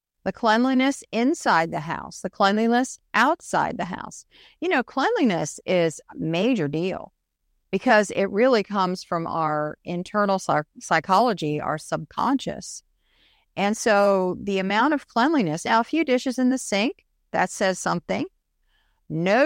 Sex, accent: female, American